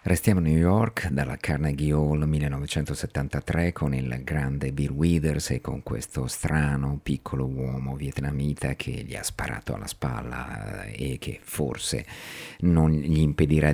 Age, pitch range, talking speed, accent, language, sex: 50-69, 70-85 Hz, 140 wpm, native, Italian, male